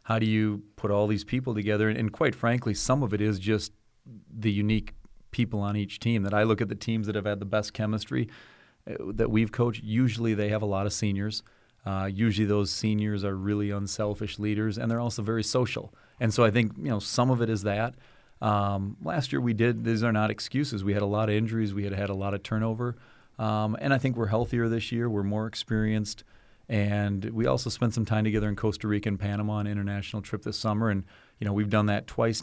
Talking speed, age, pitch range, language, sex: 235 wpm, 30-49, 105-115 Hz, English, male